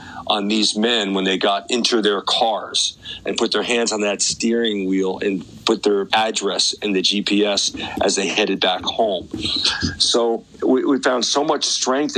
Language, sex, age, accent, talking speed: English, male, 40-59, American, 175 wpm